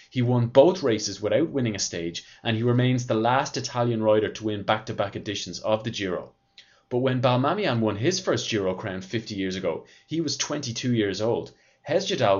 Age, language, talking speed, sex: 30-49, English, 190 wpm, male